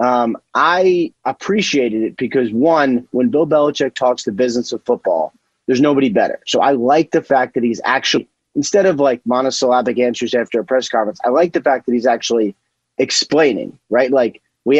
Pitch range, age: 120-155 Hz, 30-49